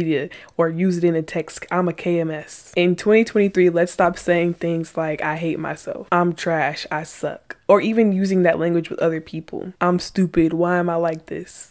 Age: 20-39